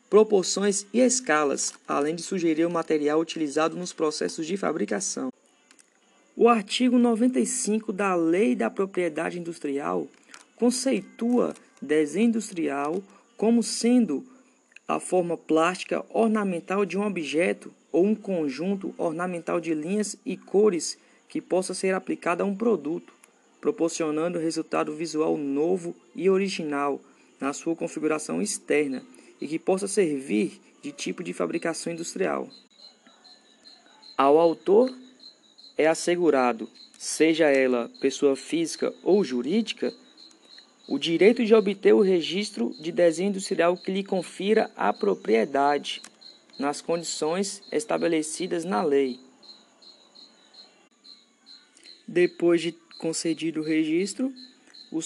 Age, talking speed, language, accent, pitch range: 20-39, 110 wpm, Portuguese, Brazilian, 165-235 Hz